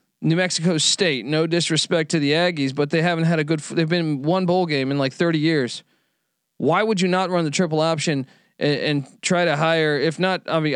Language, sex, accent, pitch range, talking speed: English, male, American, 150-185 Hz, 225 wpm